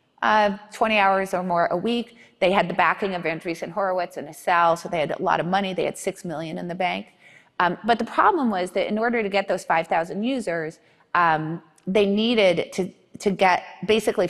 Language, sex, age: English, female, 30-49